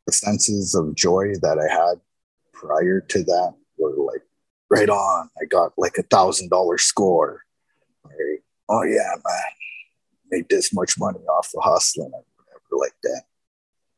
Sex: male